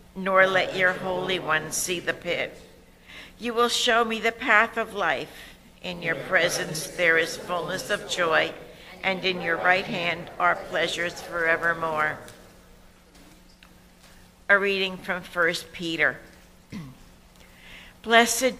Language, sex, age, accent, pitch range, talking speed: English, female, 60-79, American, 165-200 Hz, 125 wpm